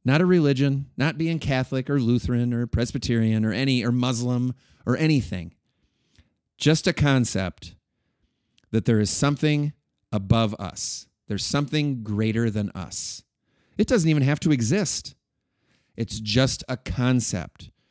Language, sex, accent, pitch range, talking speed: English, male, American, 100-135 Hz, 135 wpm